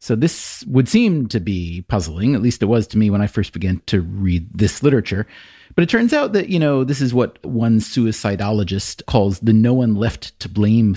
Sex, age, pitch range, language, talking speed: male, 30-49, 105-130 Hz, English, 220 wpm